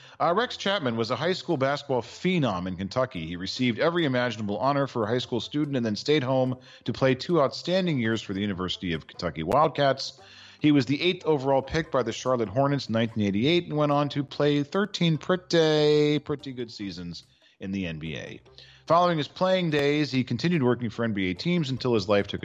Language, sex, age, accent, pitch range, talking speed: English, male, 40-59, American, 100-145 Hz, 200 wpm